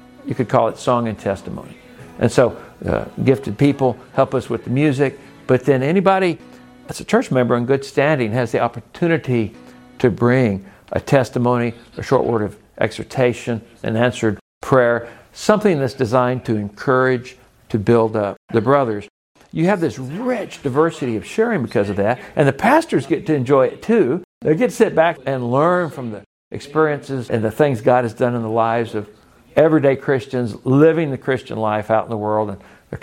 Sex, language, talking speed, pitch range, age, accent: male, English, 185 wpm, 110-140 Hz, 60-79, American